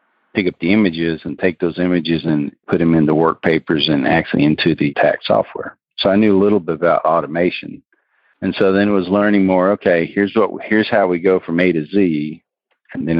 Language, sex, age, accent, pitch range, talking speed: English, male, 50-69, American, 80-95 Hz, 220 wpm